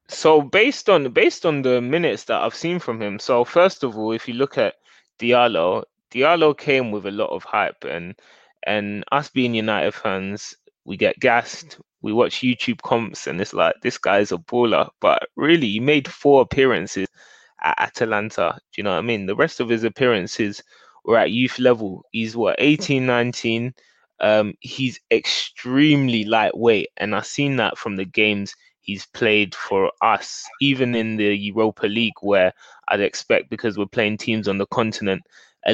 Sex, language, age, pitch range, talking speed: male, English, 20-39, 110-135 Hz, 180 wpm